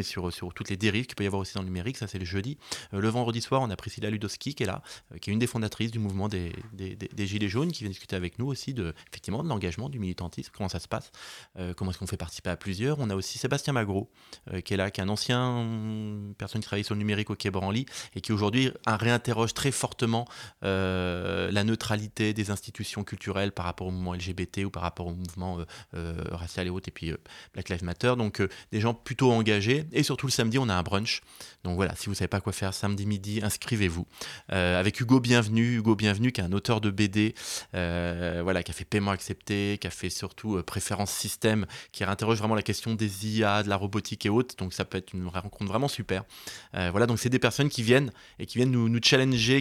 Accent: French